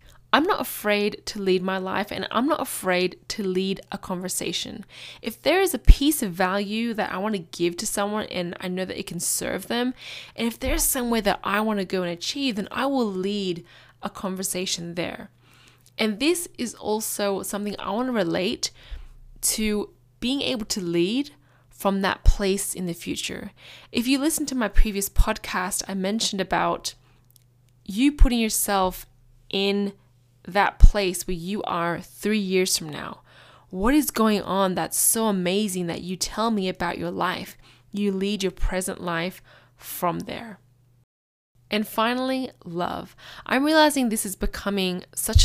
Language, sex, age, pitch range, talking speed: English, female, 10-29, 180-220 Hz, 170 wpm